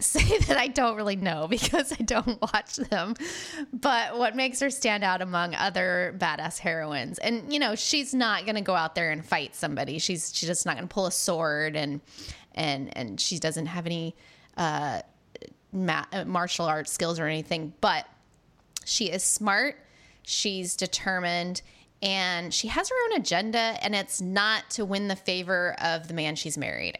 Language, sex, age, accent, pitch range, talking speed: English, female, 20-39, American, 170-215 Hz, 180 wpm